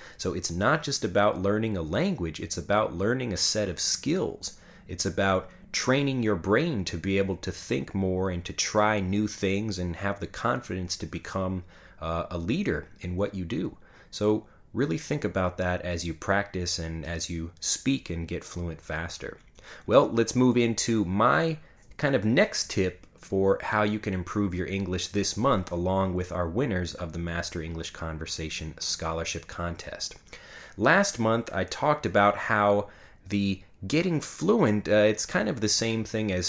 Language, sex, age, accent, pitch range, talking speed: English, male, 30-49, American, 90-105 Hz, 175 wpm